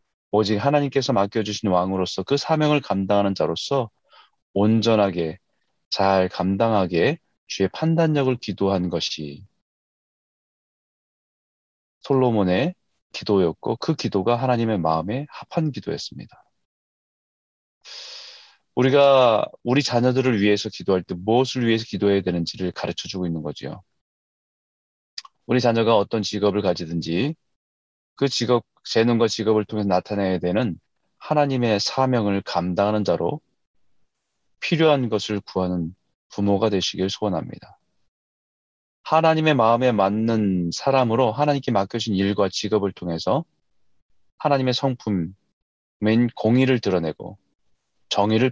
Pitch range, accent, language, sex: 95-130 Hz, native, Korean, male